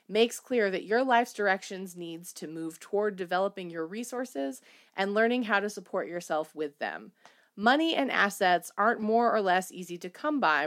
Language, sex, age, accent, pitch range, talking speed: English, female, 30-49, American, 165-210 Hz, 180 wpm